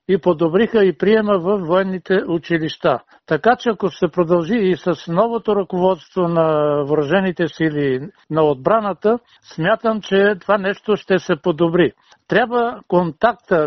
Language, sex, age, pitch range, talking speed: Bulgarian, male, 60-79, 170-210 Hz, 130 wpm